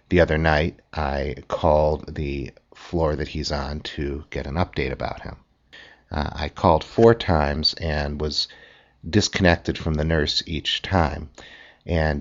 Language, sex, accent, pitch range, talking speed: English, male, American, 75-95 Hz, 145 wpm